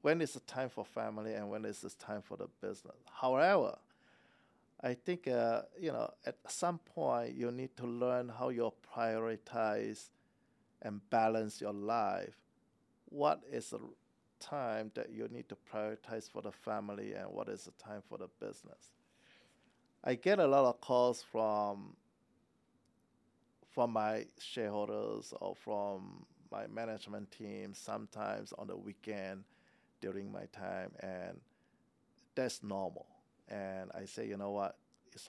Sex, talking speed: male, 145 wpm